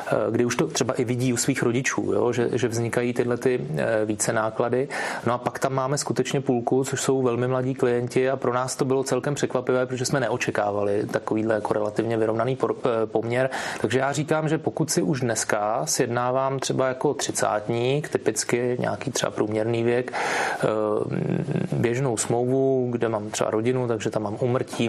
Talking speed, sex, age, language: 170 wpm, male, 30-49, Czech